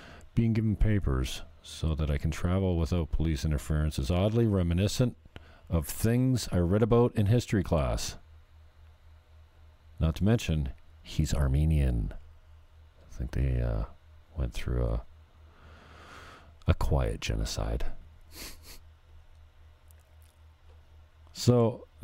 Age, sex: 40-59, male